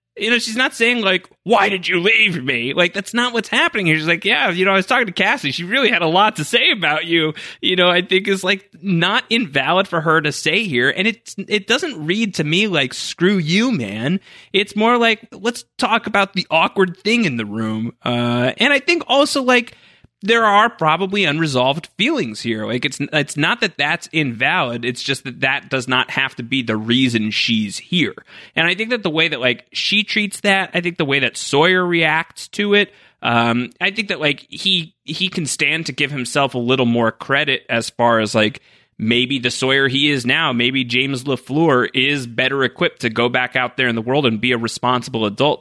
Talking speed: 220 wpm